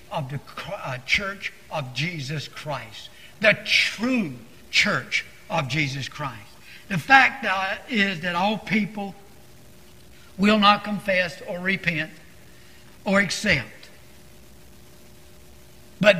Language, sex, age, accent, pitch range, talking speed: English, male, 60-79, American, 140-210 Hz, 95 wpm